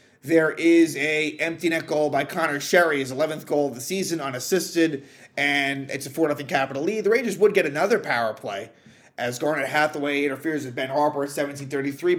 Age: 30-49